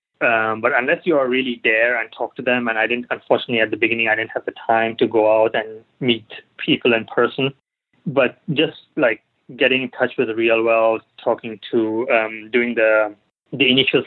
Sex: male